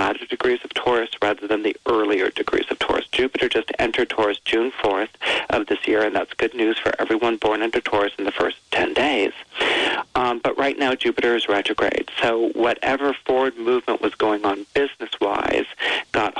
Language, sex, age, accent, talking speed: English, male, 40-59, American, 180 wpm